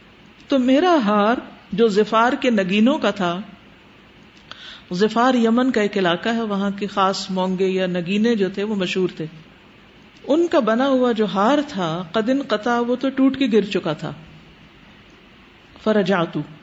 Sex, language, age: female, Urdu, 50-69